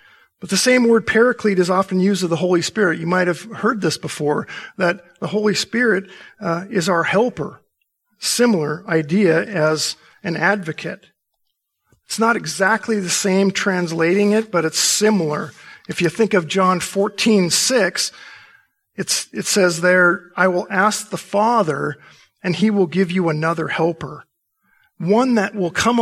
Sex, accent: male, American